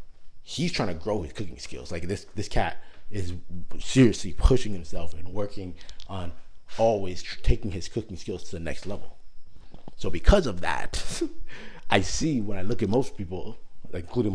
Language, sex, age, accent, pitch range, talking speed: English, male, 30-49, American, 90-110 Hz, 170 wpm